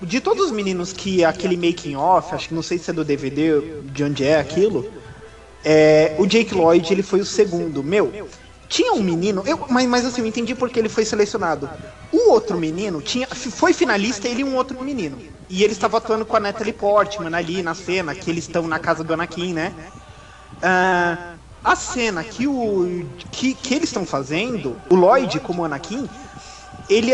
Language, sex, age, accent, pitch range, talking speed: Portuguese, male, 20-39, Brazilian, 175-230 Hz, 175 wpm